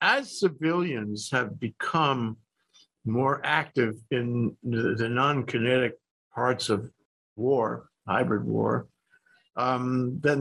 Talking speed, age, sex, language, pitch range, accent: 90 wpm, 60-79, male, English, 120-165 Hz, American